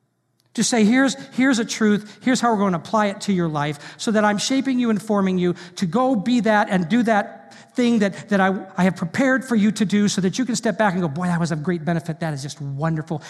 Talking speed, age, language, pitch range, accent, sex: 270 wpm, 40-59, English, 170-215 Hz, American, male